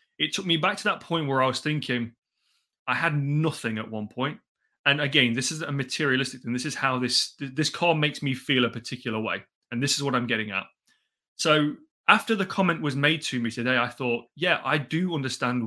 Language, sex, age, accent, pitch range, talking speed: English, male, 30-49, British, 125-160 Hz, 220 wpm